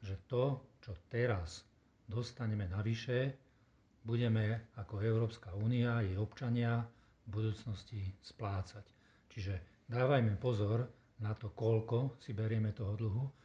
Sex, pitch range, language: male, 105-120 Hz, Slovak